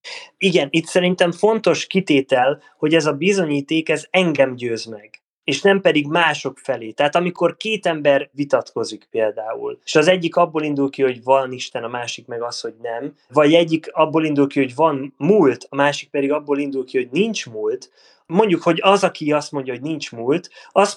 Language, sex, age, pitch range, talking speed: Hungarian, male, 20-39, 140-190 Hz, 190 wpm